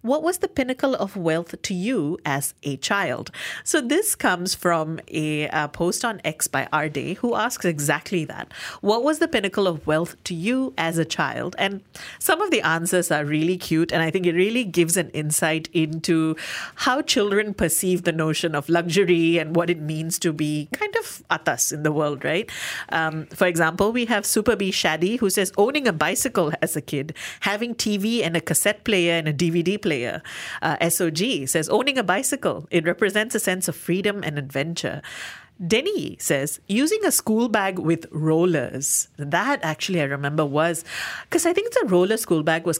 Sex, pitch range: female, 160-210 Hz